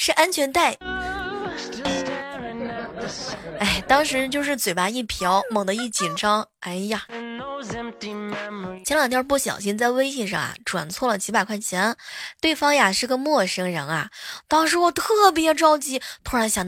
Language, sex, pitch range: Chinese, female, 200-275 Hz